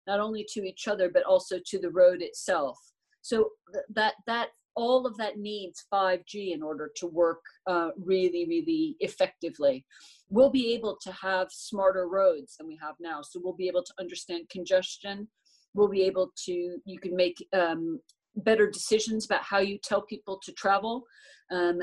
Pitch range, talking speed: 180-225 Hz, 175 wpm